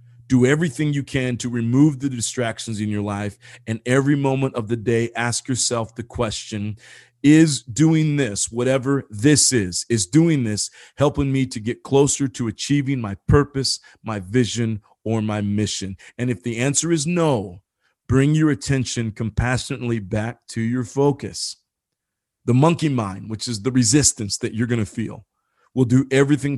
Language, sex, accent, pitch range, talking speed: English, male, American, 110-130 Hz, 165 wpm